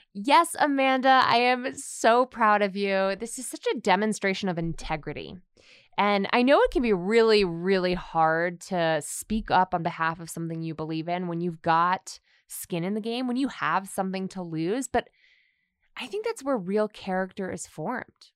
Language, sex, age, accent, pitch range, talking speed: English, female, 20-39, American, 175-265 Hz, 185 wpm